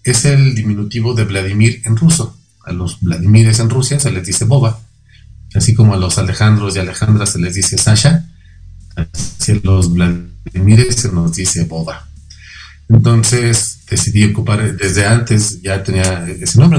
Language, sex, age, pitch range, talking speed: Spanish, male, 40-59, 90-115 Hz, 155 wpm